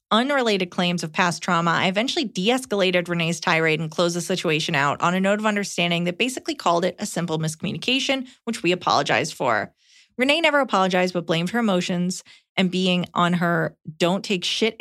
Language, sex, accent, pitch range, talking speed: English, female, American, 170-215 Hz, 175 wpm